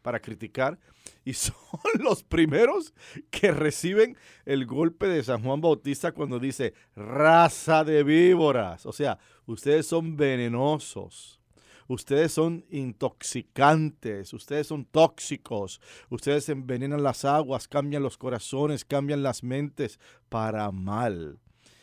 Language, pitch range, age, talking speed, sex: English, 115-160 Hz, 50-69, 115 wpm, male